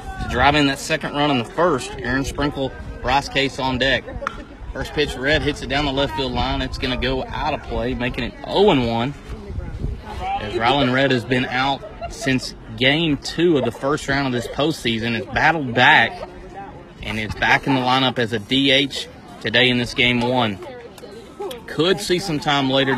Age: 30-49